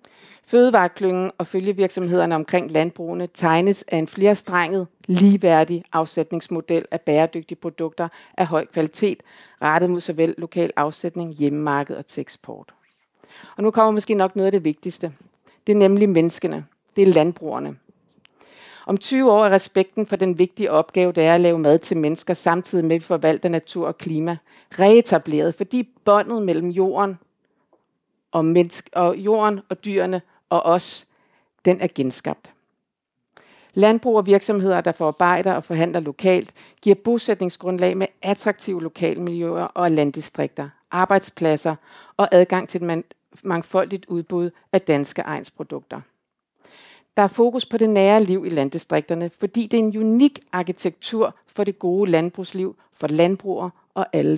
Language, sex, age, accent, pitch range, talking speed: Danish, female, 50-69, native, 165-200 Hz, 140 wpm